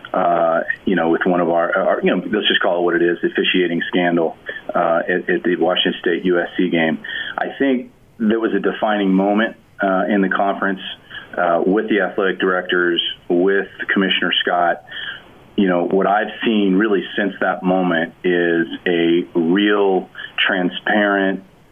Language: English